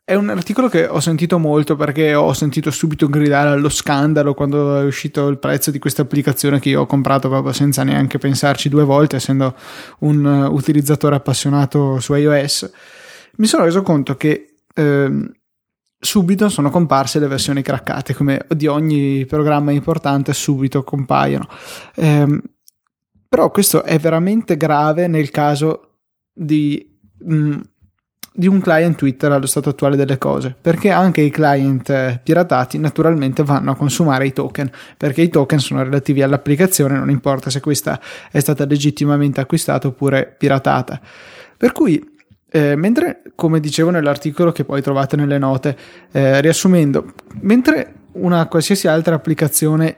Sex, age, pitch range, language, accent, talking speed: male, 20-39, 140-160 Hz, Italian, native, 145 wpm